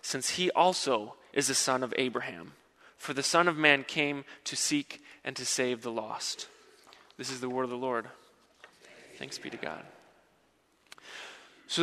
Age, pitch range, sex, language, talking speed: 20-39, 140-170 Hz, male, English, 165 wpm